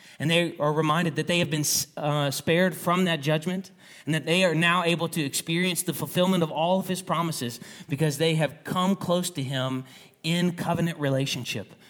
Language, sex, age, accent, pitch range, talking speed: English, male, 30-49, American, 125-170 Hz, 190 wpm